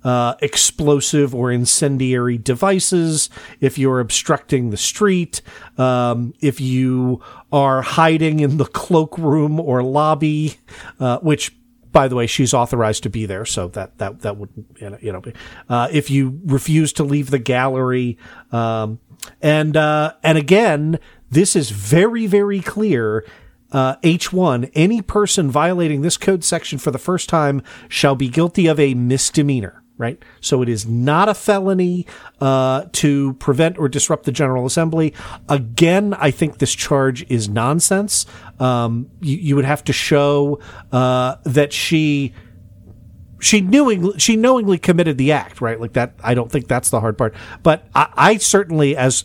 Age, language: 40-59, English